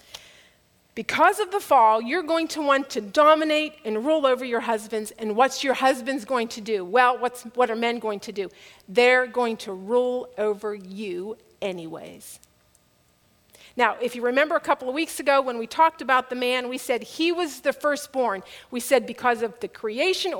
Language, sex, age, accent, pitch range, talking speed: English, female, 50-69, American, 210-270 Hz, 185 wpm